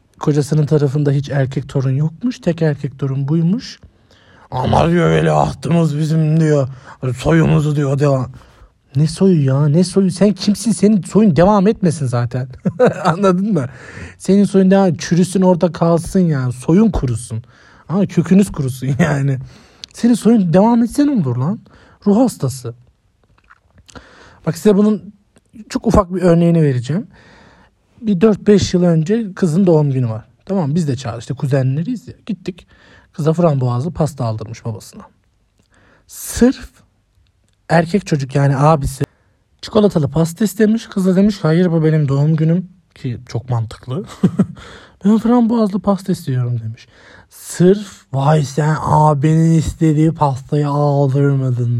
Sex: male